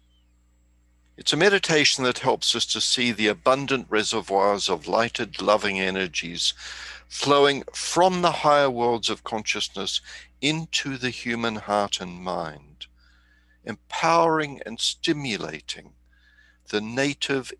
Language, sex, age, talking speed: English, male, 60-79, 115 wpm